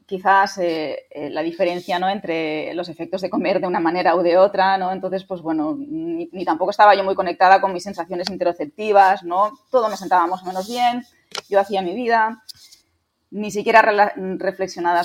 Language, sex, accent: Spanish, female, Spanish